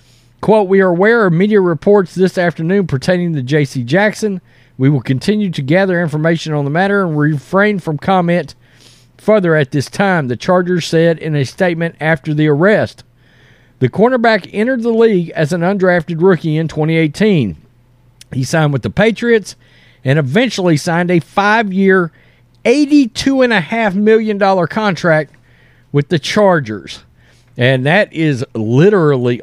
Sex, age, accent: male, 40-59, American